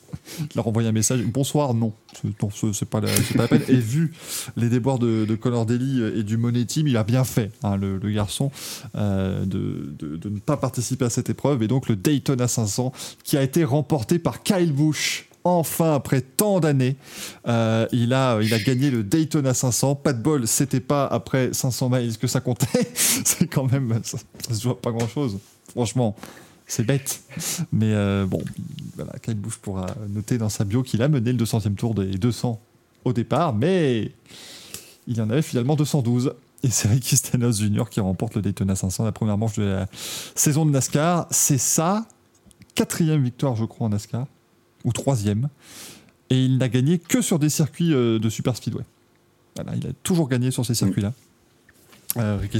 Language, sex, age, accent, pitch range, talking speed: French, male, 20-39, French, 110-140 Hz, 195 wpm